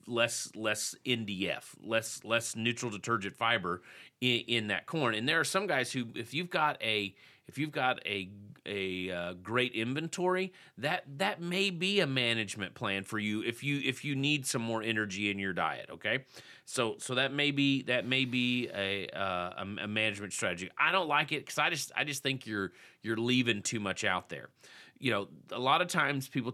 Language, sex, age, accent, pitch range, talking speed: English, male, 30-49, American, 105-135 Hz, 200 wpm